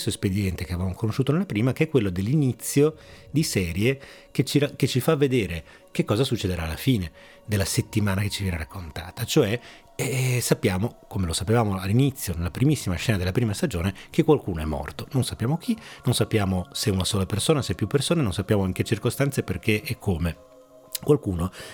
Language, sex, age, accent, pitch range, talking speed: Italian, male, 30-49, native, 95-130 Hz, 190 wpm